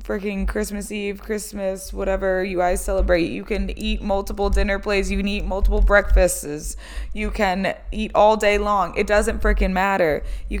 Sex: female